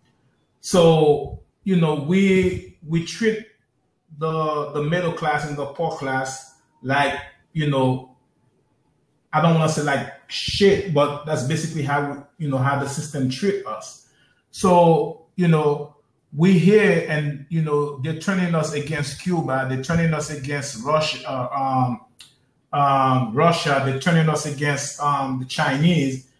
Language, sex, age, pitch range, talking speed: English, male, 30-49, 140-175 Hz, 145 wpm